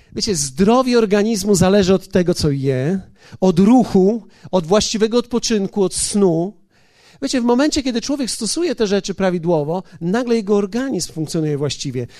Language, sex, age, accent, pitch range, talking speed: Polish, male, 40-59, native, 165-230 Hz, 145 wpm